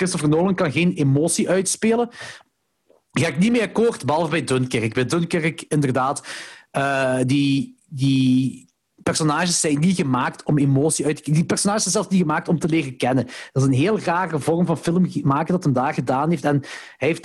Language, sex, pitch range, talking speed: Dutch, male, 145-200 Hz, 195 wpm